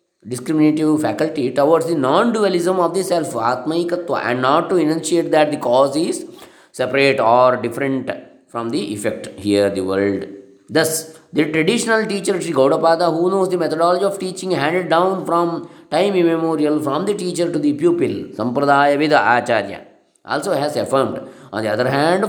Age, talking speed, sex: 20-39, 160 wpm, male